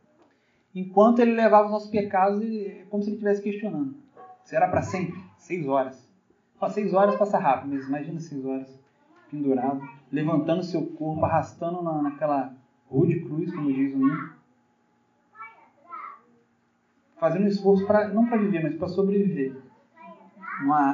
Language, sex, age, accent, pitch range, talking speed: Portuguese, male, 30-49, Brazilian, 155-210 Hz, 145 wpm